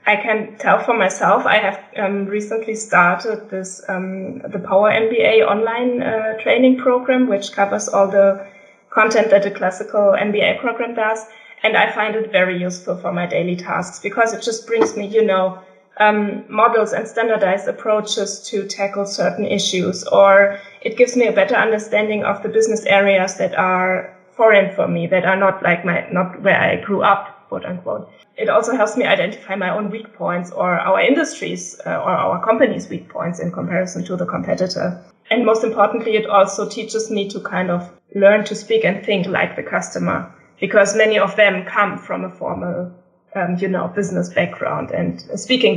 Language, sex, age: English, female, 20-39